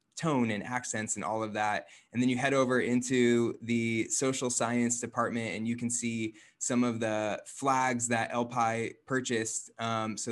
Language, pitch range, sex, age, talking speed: English, 105-115 Hz, male, 20-39, 175 wpm